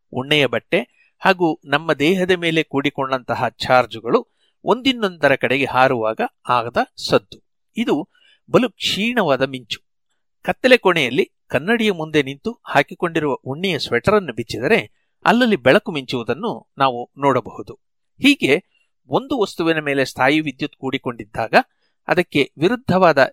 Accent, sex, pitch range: native, male, 130-190 Hz